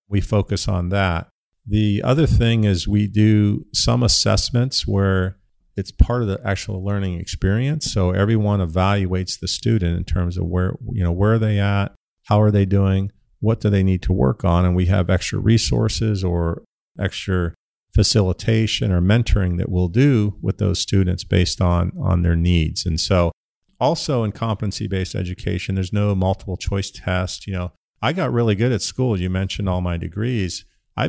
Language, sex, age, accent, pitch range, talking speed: English, male, 50-69, American, 90-110 Hz, 180 wpm